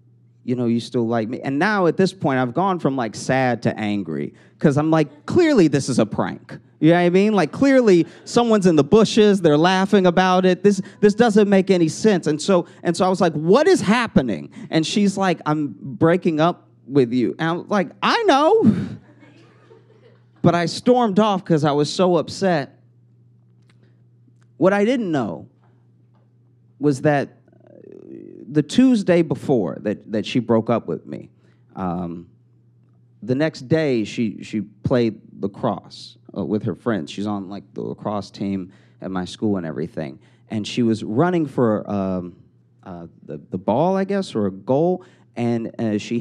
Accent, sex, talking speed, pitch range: American, male, 175 wpm, 120-180 Hz